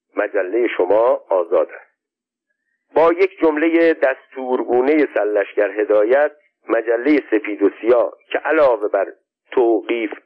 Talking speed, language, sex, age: 100 wpm, Persian, male, 50-69